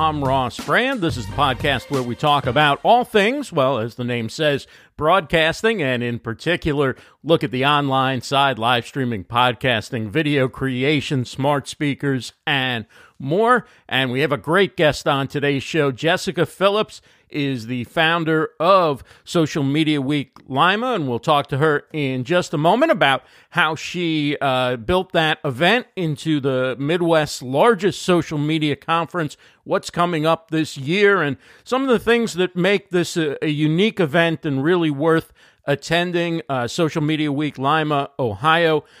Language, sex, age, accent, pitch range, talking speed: English, male, 50-69, American, 135-165 Hz, 160 wpm